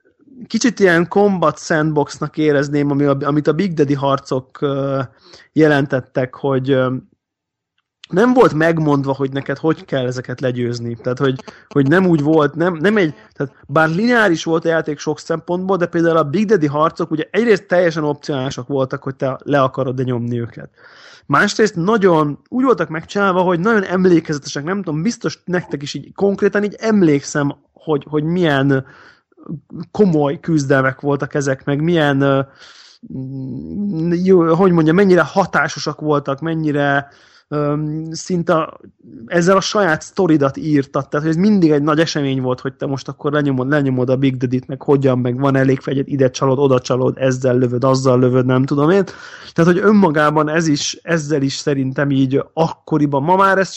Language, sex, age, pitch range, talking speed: Hungarian, male, 20-39, 135-170 Hz, 160 wpm